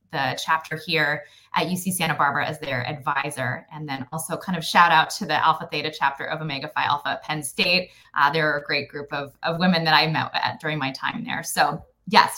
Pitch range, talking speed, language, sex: 155-200 Hz, 230 wpm, English, female